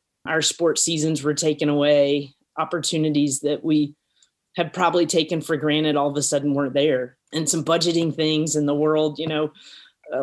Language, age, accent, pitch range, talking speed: English, 30-49, American, 150-170 Hz, 175 wpm